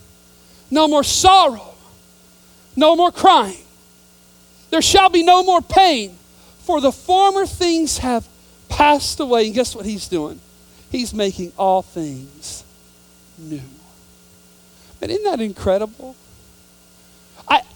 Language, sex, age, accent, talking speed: English, male, 40-59, American, 115 wpm